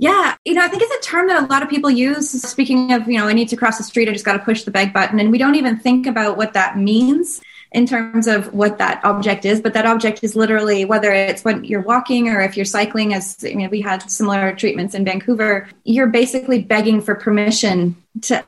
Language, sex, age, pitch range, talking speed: English, female, 20-39, 195-245 Hz, 245 wpm